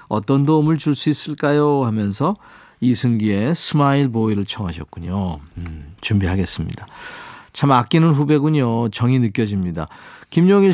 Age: 40-59